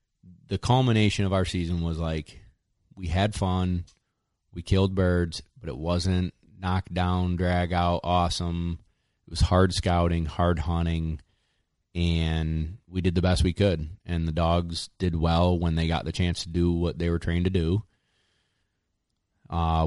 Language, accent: English, American